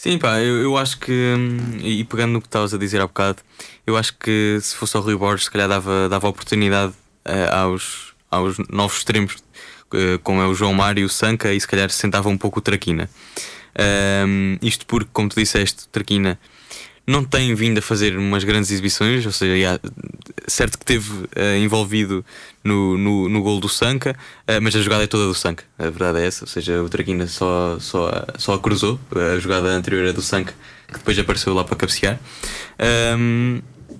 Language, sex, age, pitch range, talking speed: Portuguese, male, 20-39, 95-115 Hz, 195 wpm